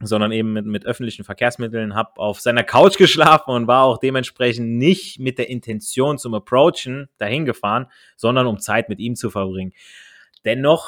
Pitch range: 110-130 Hz